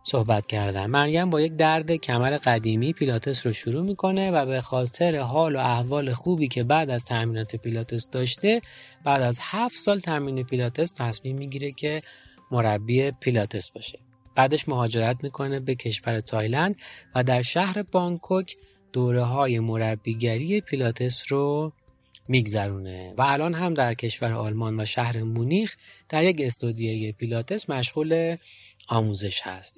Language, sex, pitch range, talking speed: Persian, male, 115-150 Hz, 135 wpm